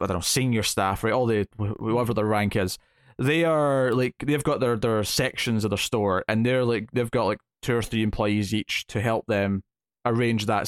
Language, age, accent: English, 20-39, British